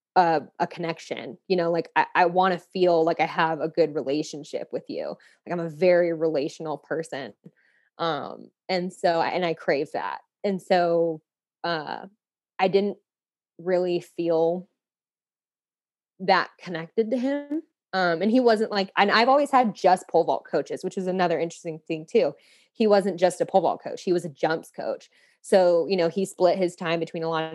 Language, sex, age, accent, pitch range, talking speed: English, female, 20-39, American, 160-195 Hz, 185 wpm